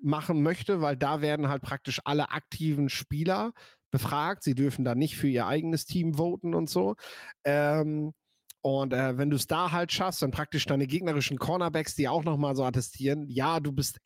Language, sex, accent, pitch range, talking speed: German, male, German, 130-160 Hz, 180 wpm